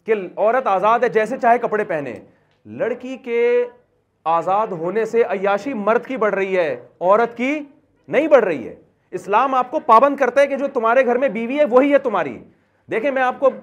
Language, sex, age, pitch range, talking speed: Urdu, male, 40-59, 170-245 Hz, 200 wpm